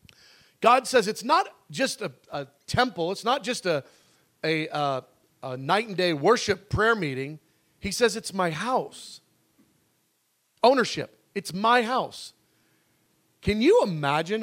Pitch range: 155-240 Hz